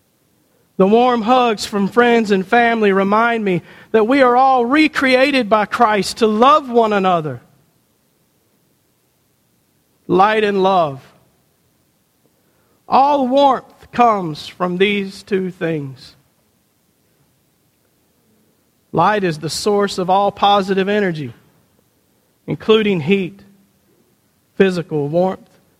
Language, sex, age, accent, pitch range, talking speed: English, male, 50-69, American, 165-215 Hz, 100 wpm